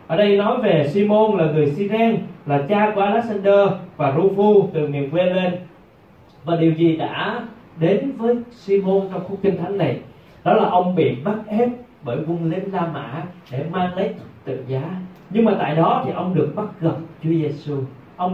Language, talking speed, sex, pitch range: Vietnamese, 190 wpm, male, 155-215 Hz